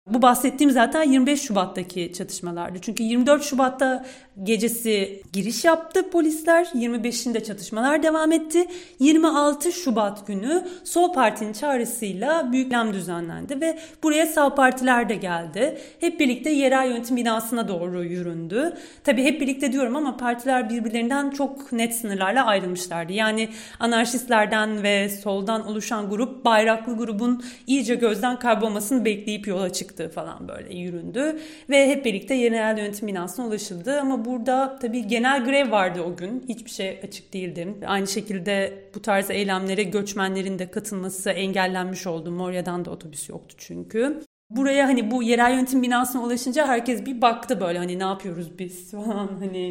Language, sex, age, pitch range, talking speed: Turkish, female, 40-59, 195-265 Hz, 140 wpm